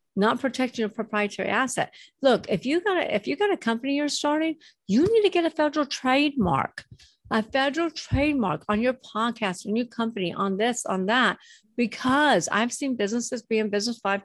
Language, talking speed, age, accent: English, 190 wpm, 50-69, American